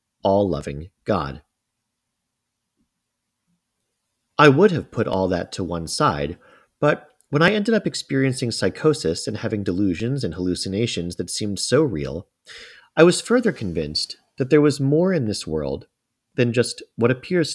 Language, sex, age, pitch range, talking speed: English, male, 40-59, 95-135 Hz, 145 wpm